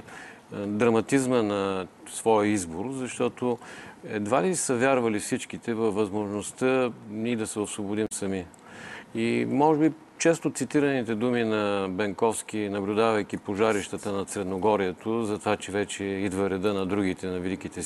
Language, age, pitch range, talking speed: Bulgarian, 40-59, 105-130 Hz, 130 wpm